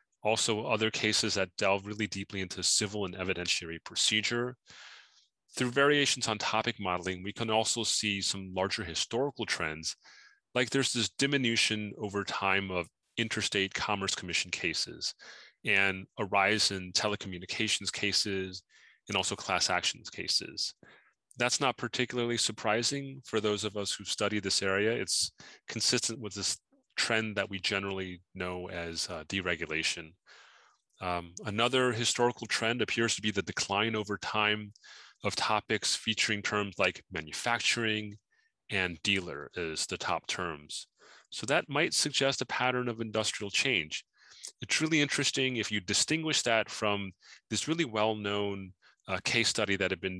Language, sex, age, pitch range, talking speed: English, male, 30-49, 95-115 Hz, 145 wpm